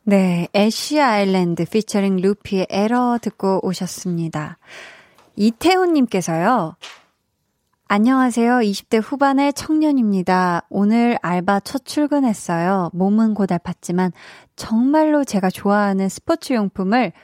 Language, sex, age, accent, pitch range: Korean, female, 20-39, native, 185-250 Hz